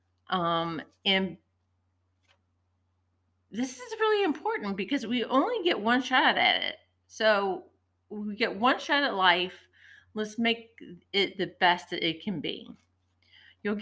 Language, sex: English, female